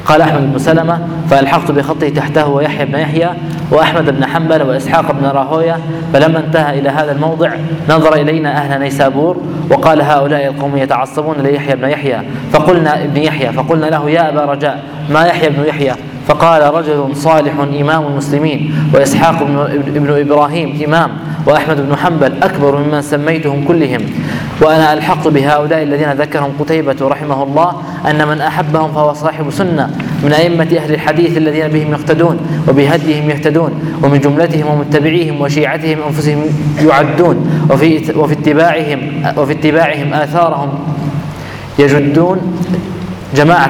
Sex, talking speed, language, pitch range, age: male, 135 wpm, Arabic, 145-160 Hz, 20-39